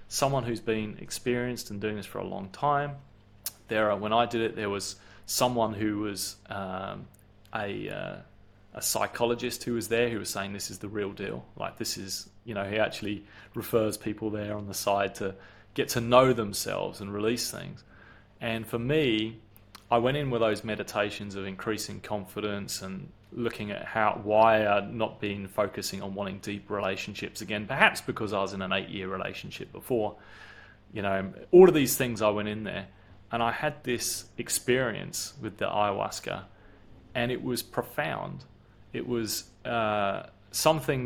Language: English